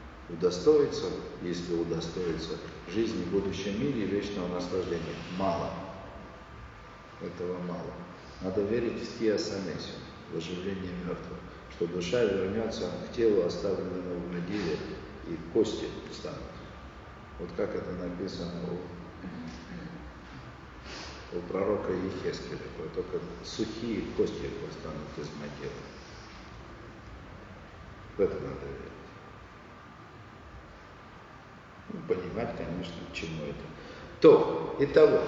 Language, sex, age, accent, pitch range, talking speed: Russian, male, 50-69, native, 90-125 Hz, 95 wpm